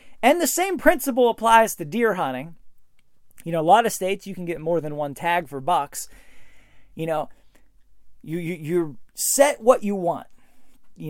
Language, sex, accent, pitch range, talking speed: English, male, American, 170-235 Hz, 180 wpm